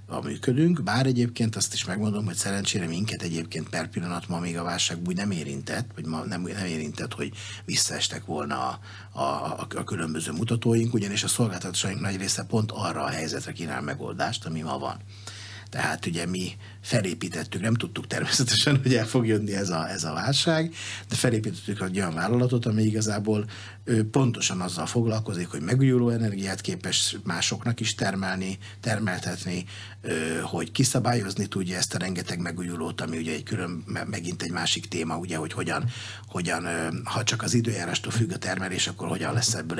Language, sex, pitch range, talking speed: Hungarian, male, 90-115 Hz, 165 wpm